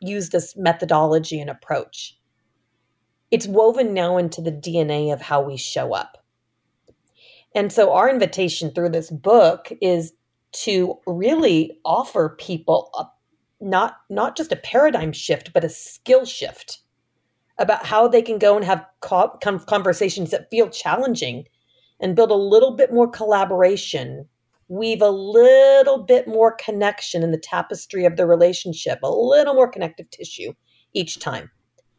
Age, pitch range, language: 40-59, 160-235 Hz, English